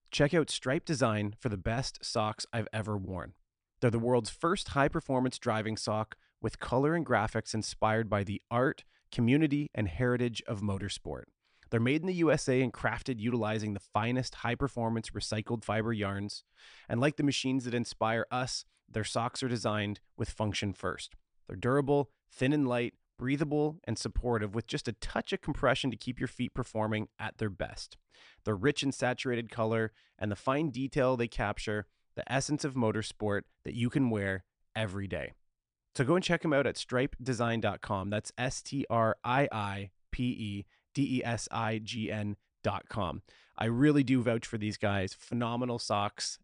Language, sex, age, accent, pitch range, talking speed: English, male, 30-49, American, 105-130 Hz, 170 wpm